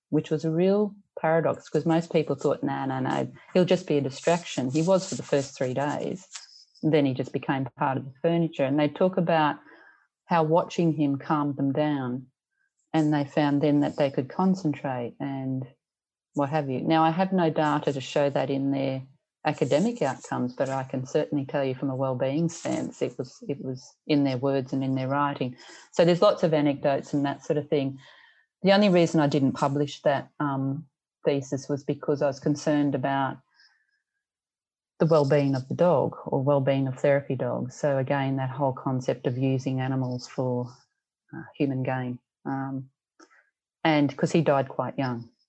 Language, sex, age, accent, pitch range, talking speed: English, female, 40-59, Australian, 135-155 Hz, 185 wpm